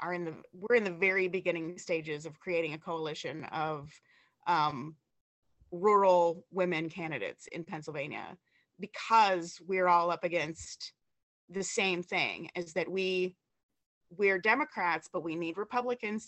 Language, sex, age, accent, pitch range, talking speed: English, female, 30-49, American, 165-185 Hz, 125 wpm